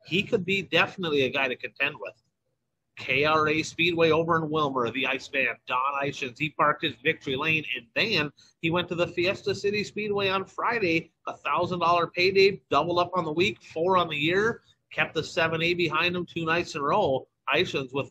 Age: 30-49